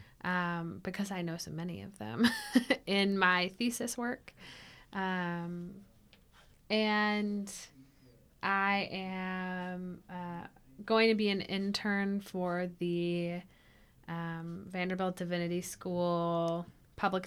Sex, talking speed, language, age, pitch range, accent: female, 100 wpm, English, 20-39, 170-195 Hz, American